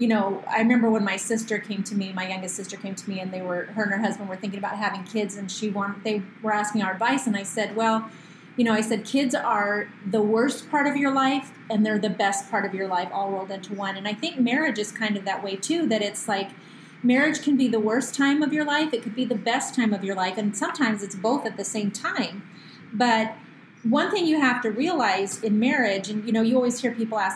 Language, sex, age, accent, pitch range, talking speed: English, female, 30-49, American, 200-255 Hz, 265 wpm